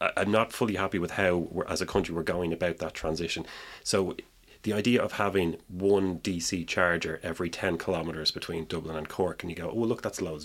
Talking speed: 205 wpm